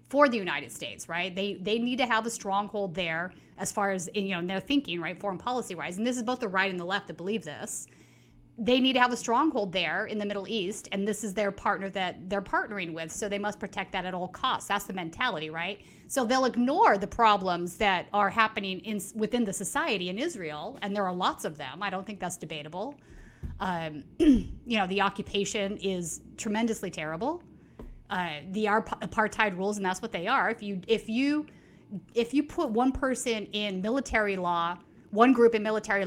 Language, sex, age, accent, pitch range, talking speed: English, female, 30-49, American, 185-225 Hz, 210 wpm